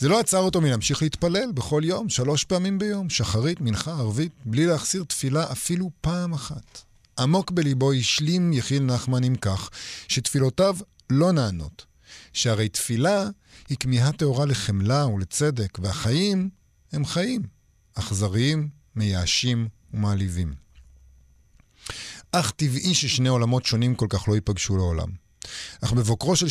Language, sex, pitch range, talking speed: Hebrew, male, 110-150 Hz, 125 wpm